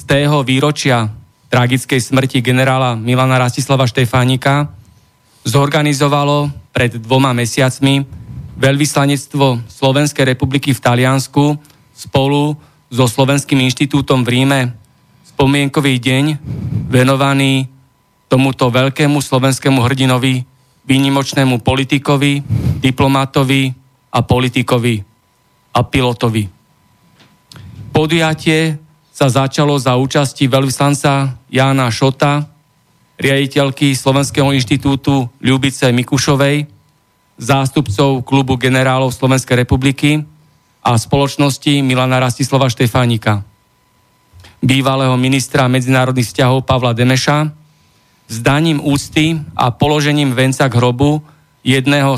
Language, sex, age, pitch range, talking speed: Slovak, male, 40-59, 130-145 Hz, 85 wpm